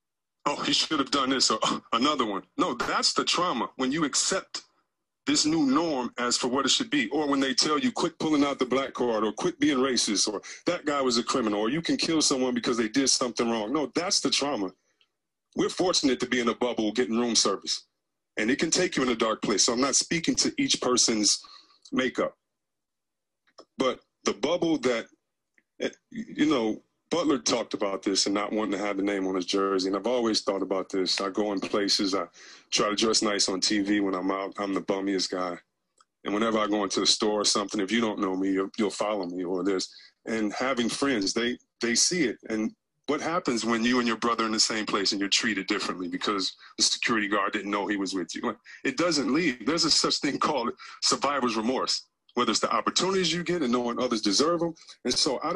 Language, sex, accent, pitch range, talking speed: English, male, American, 100-140 Hz, 225 wpm